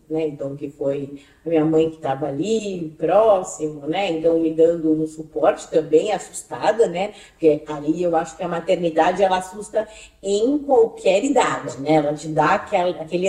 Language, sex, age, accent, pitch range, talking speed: Portuguese, female, 40-59, Brazilian, 160-240 Hz, 165 wpm